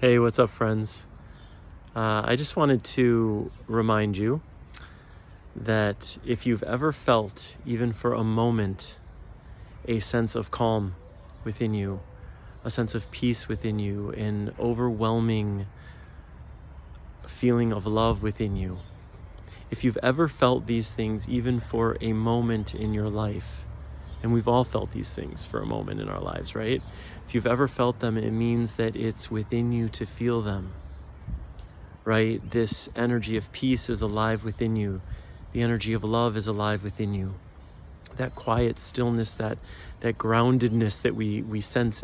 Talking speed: 150 wpm